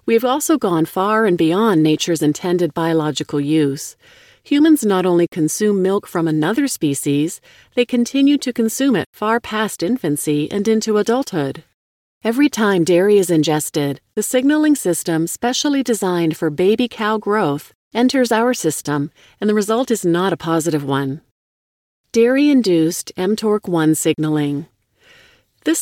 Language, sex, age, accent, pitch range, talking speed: English, female, 40-59, American, 165-230 Hz, 135 wpm